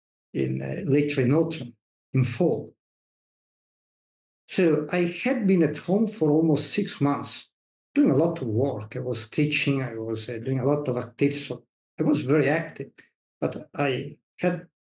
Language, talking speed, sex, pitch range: English, 160 wpm, male, 130-160 Hz